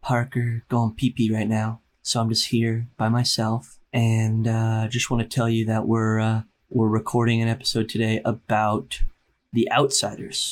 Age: 20-39